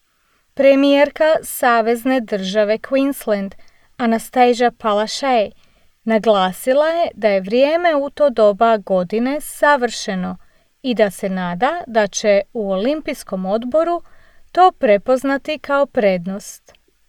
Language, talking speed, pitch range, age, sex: English, 100 wpm, 215-290 Hz, 30-49, female